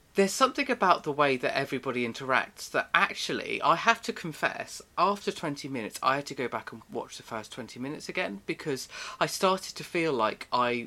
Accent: British